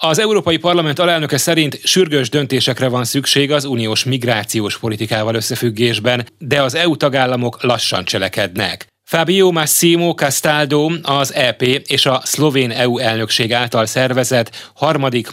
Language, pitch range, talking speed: Hungarian, 115-145 Hz, 130 wpm